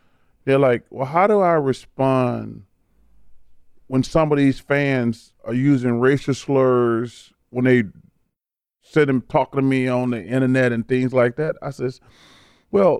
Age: 40-59